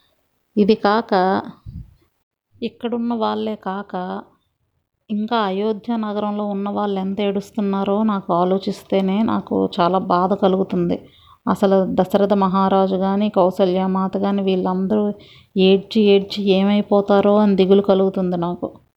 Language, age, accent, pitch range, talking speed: Telugu, 30-49, native, 185-210 Hz, 100 wpm